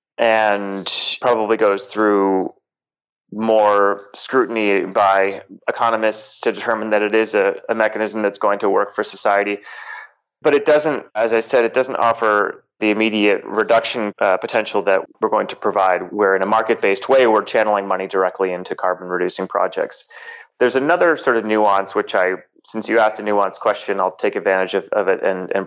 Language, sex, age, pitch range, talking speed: English, male, 30-49, 95-115 Hz, 175 wpm